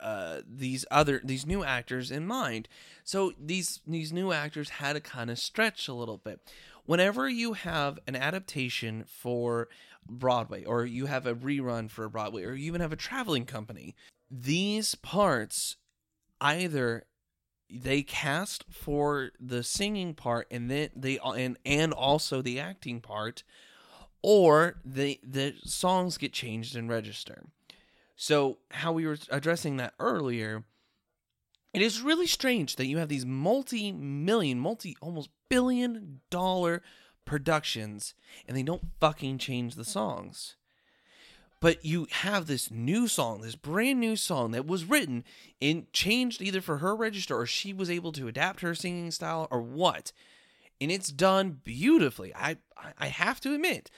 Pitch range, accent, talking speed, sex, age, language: 130-190 Hz, American, 150 wpm, male, 20-39, English